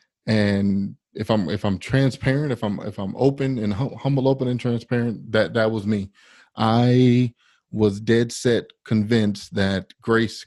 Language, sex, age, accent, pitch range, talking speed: English, male, 30-49, American, 100-115 Hz, 155 wpm